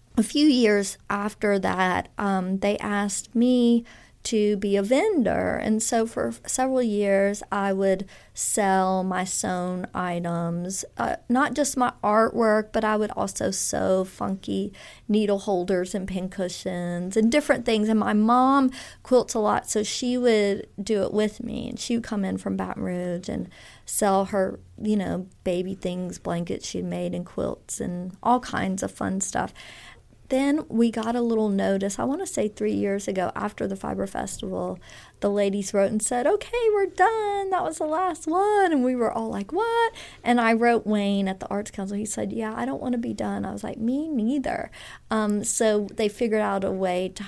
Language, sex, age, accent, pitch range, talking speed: English, female, 40-59, American, 190-240 Hz, 190 wpm